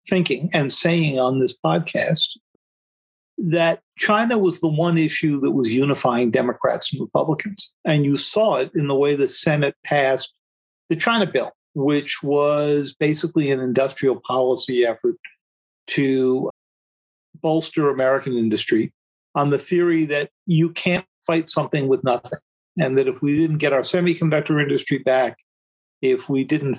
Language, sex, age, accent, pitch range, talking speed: English, male, 50-69, American, 135-180 Hz, 145 wpm